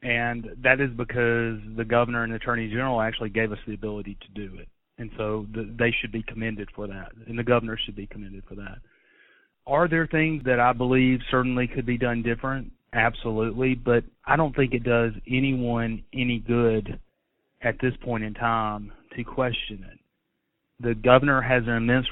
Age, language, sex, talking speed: 30-49, English, male, 180 wpm